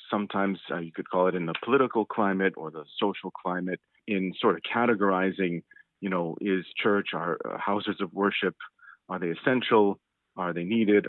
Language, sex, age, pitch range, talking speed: English, male, 40-59, 95-115 Hz, 175 wpm